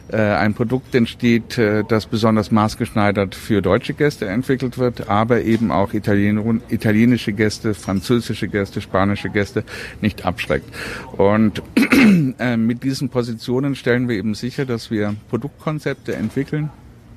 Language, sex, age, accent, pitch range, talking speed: German, male, 60-79, German, 105-120 Hz, 120 wpm